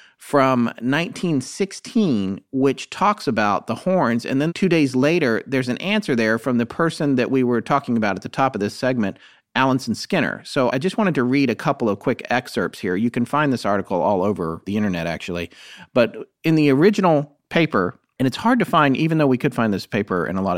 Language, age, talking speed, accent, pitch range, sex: English, 40-59, 215 wpm, American, 120-160 Hz, male